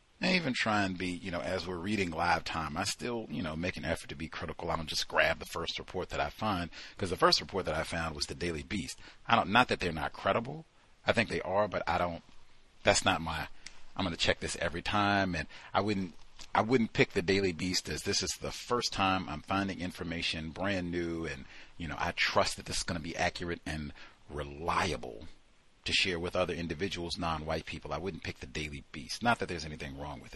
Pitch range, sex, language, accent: 80-100 Hz, male, English, American